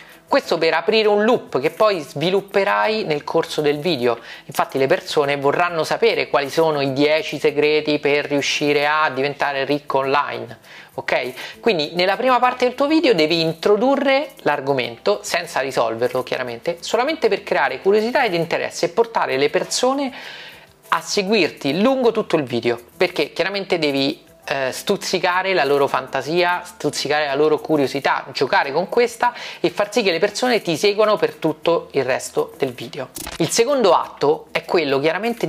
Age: 30-49